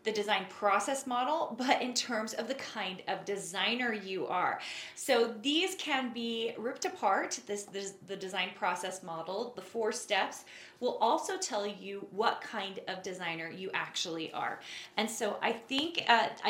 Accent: American